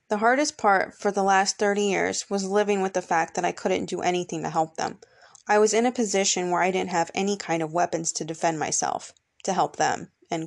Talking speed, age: 235 wpm, 20-39